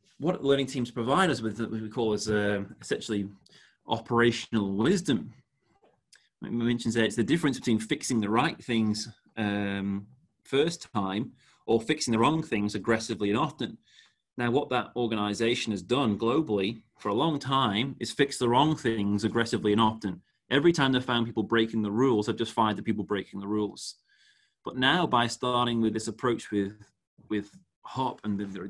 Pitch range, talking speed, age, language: 100-120 Hz, 175 wpm, 30-49, English